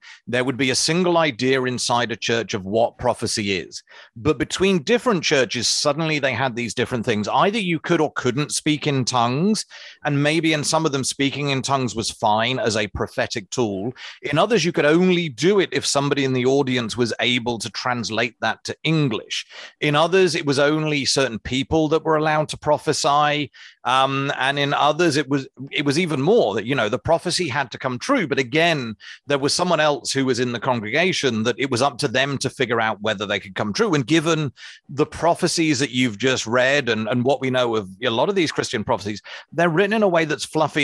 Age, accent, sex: 30-49, British, male